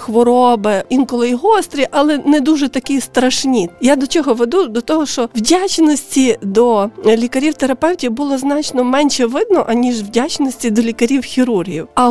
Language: Ukrainian